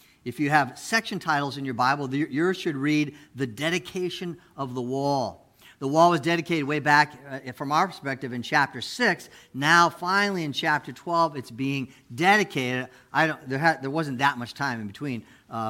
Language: English